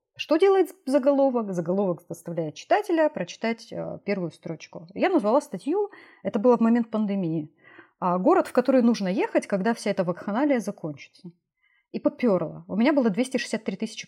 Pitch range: 180-255 Hz